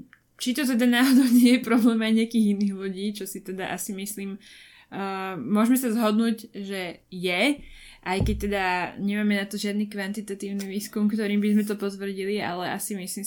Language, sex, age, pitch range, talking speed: Slovak, female, 20-39, 200-225 Hz, 175 wpm